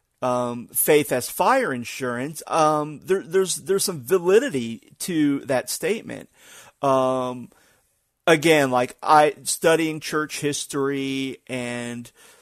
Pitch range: 130-150 Hz